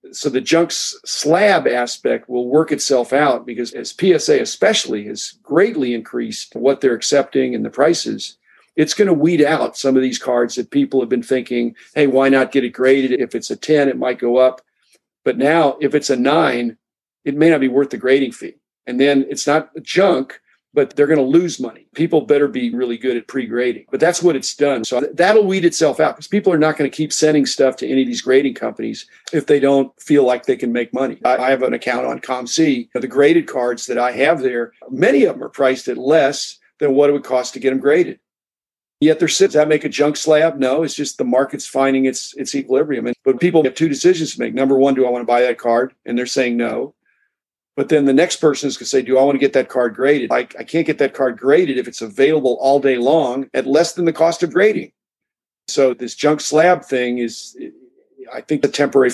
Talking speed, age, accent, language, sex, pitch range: 235 wpm, 50-69, American, English, male, 125-155 Hz